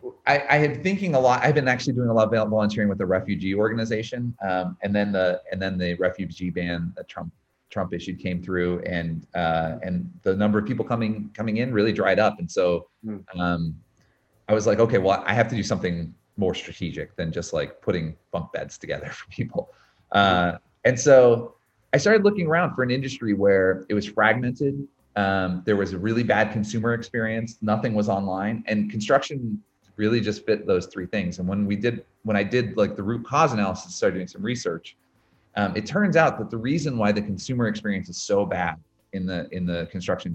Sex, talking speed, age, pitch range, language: male, 205 wpm, 30-49, 95-120 Hz, English